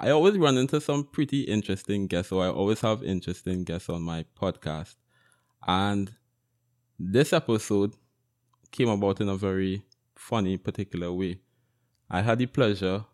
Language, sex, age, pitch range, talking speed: English, male, 20-39, 100-120 Hz, 145 wpm